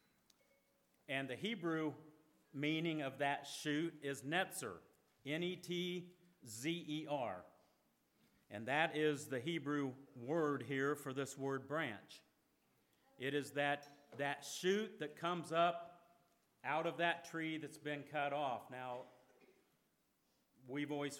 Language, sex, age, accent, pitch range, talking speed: English, male, 50-69, American, 140-160 Hz, 115 wpm